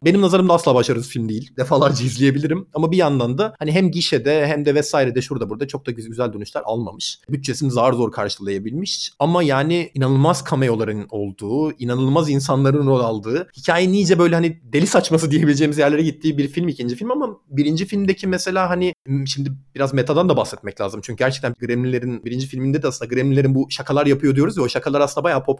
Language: Turkish